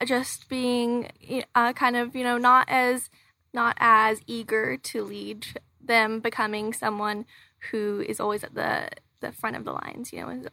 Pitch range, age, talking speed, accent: 220-250 Hz, 20-39, 170 wpm, American